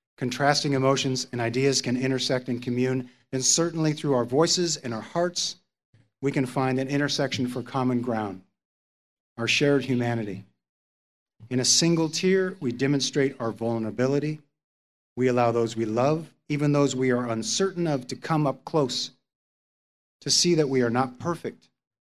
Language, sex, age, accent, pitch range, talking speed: English, male, 40-59, American, 125-155 Hz, 155 wpm